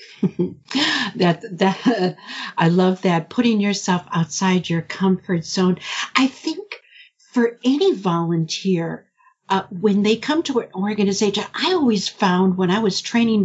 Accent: American